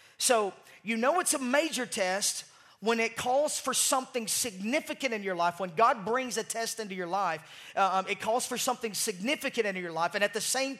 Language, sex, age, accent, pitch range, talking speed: English, male, 30-49, American, 195-255 Hz, 205 wpm